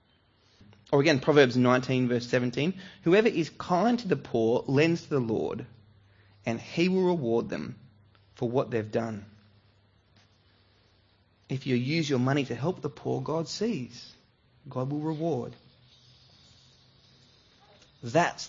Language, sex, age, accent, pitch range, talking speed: English, male, 20-39, Australian, 115-170 Hz, 130 wpm